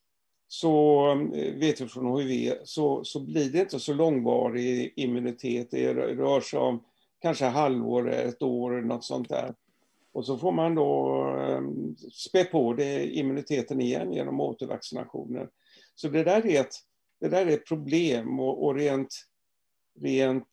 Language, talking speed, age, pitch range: Swedish, 160 wpm, 50-69, 125-155 Hz